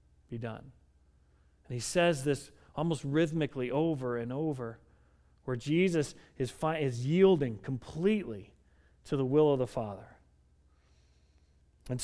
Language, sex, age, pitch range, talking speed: English, male, 40-59, 135-195 Hz, 125 wpm